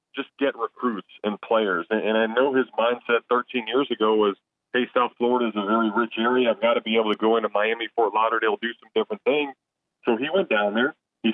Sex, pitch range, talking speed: male, 110-125 Hz, 230 wpm